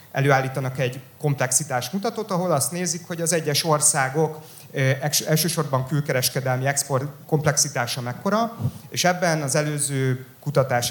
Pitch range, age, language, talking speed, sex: 130-155 Hz, 30-49, English, 115 wpm, male